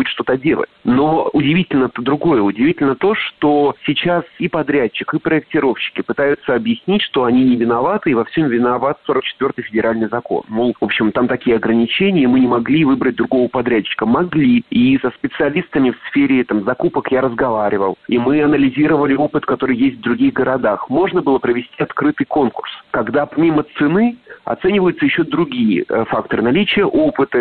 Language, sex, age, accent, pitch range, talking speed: Russian, male, 40-59, native, 125-180 Hz, 160 wpm